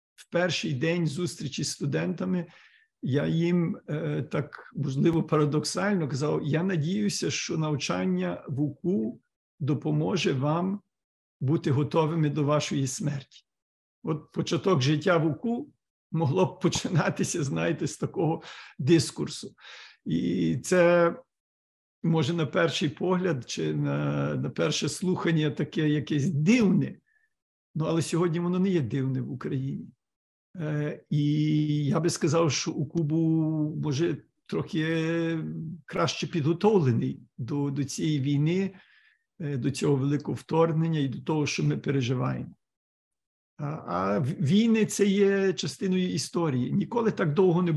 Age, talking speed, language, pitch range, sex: 50-69, 125 wpm, Ukrainian, 145-175 Hz, male